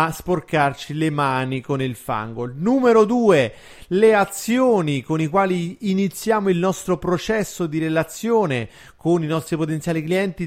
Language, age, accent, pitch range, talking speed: Italian, 30-49, native, 150-195 Hz, 140 wpm